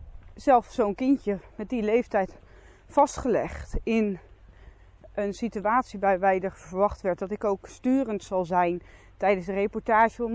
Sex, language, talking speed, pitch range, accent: female, Dutch, 140 wpm, 170-220 Hz, Dutch